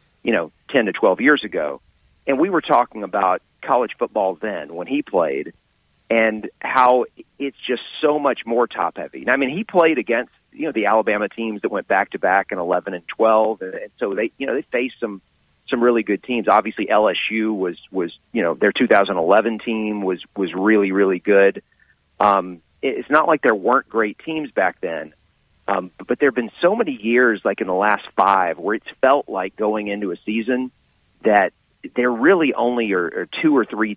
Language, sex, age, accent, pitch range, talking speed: English, male, 40-59, American, 100-125 Hz, 200 wpm